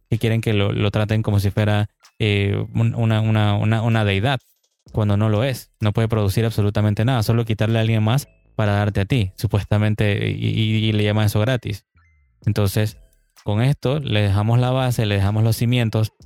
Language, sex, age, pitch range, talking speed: Spanish, male, 20-39, 105-125 Hz, 190 wpm